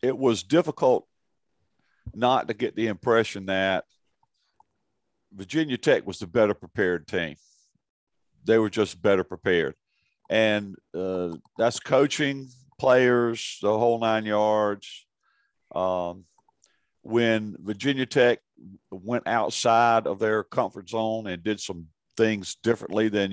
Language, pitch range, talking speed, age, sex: English, 95-115 Hz, 120 wpm, 50-69, male